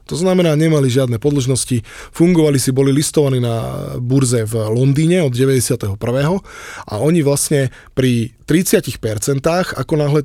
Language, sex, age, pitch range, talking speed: Slovak, male, 20-39, 125-145 Hz, 130 wpm